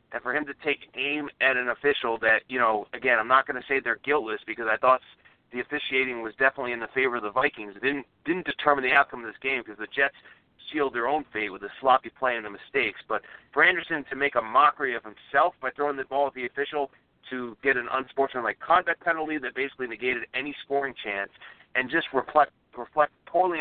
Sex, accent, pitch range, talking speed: male, American, 120-145 Hz, 225 wpm